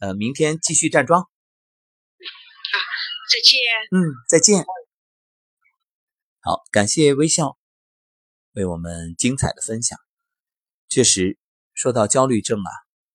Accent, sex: native, male